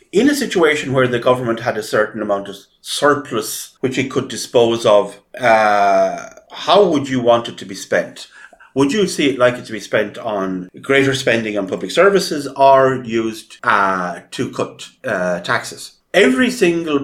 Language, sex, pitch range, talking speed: English, male, 100-145 Hz, 170 wpm